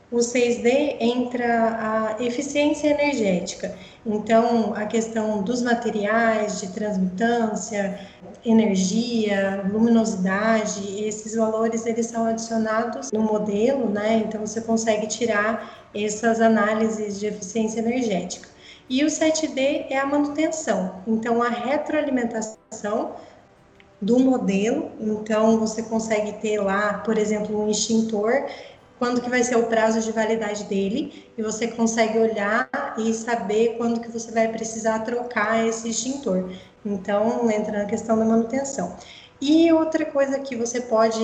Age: 20-39